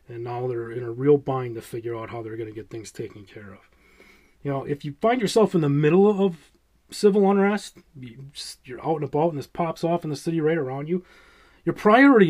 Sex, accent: male, American